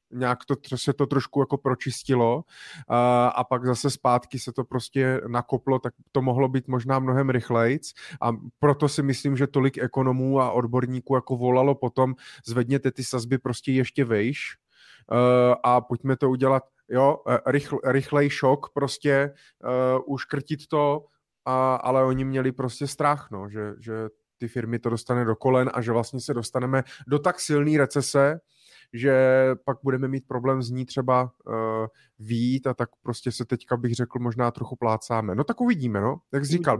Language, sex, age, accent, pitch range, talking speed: Czech, male, 30-49, native, 120-140 Hz, 170 wpm